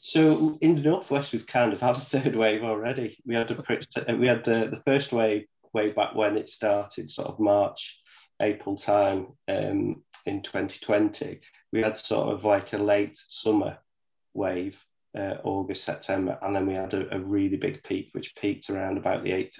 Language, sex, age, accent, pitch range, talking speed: English, male, 30-49, British, 95-115 Hz, 185 wpm